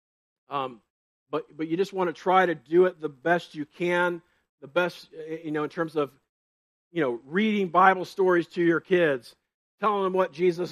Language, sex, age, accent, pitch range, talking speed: English, male, 50-69, American, 155-230 Hz, 190 wpm